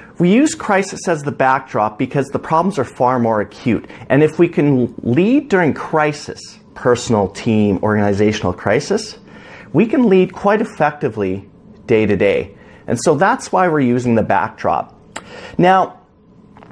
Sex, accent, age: male, American, 40-59